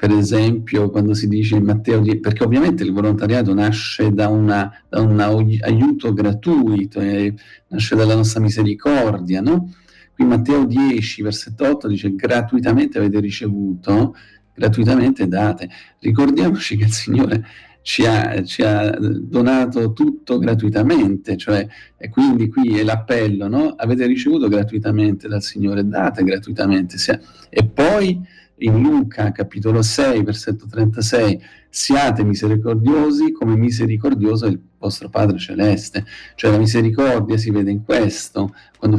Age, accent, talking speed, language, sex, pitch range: 40-59, native, 130 wpm, Italian, male, 105-120 Hz